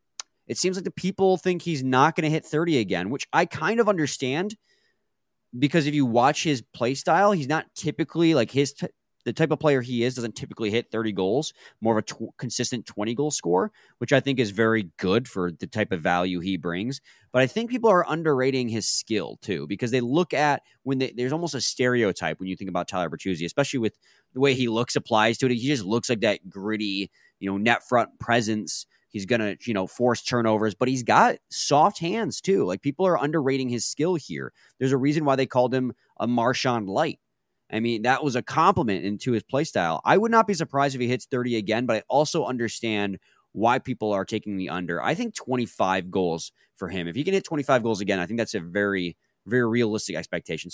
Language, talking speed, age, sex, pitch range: English, 220 wpm, 20-39, male, 110-145 Hz